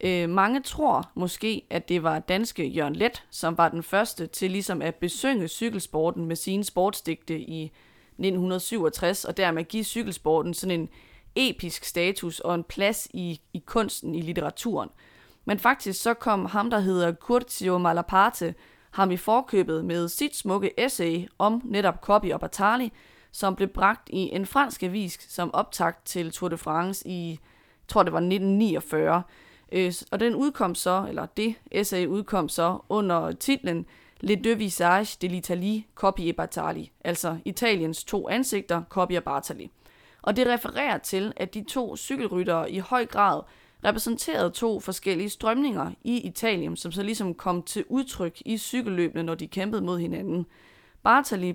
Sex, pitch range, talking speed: female, 170-215 Hz, 155 wpm